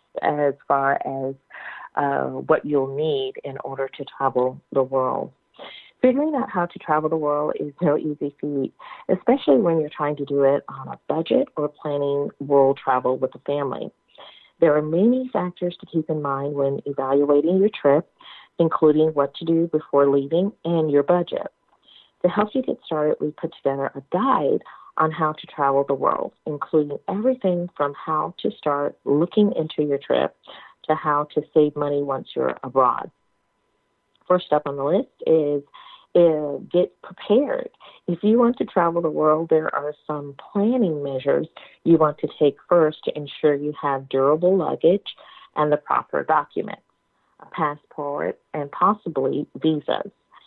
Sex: female